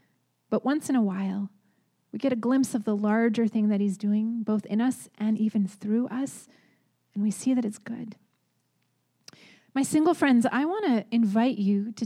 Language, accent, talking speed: English, American, 190 wpm